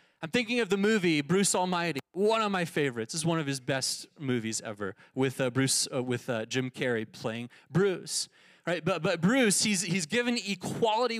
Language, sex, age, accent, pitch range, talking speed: English, male, 30-49, American, 155-205 Hz, 195 wpm